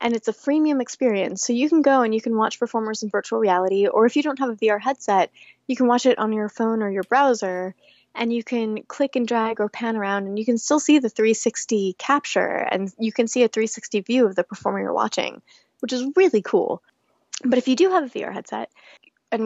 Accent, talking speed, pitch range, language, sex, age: American, 235 wpm, 210-250 Hz, English, female, 10-29